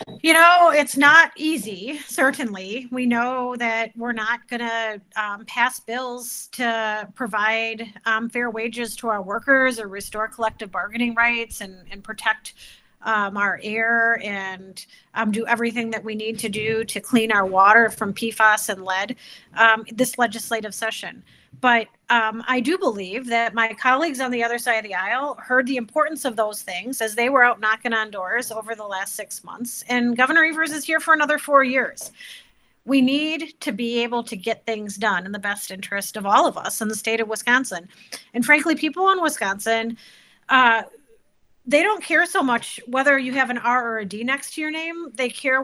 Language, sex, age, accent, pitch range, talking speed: English, female, 30-49, American, 215-255 Hz, 190 wpm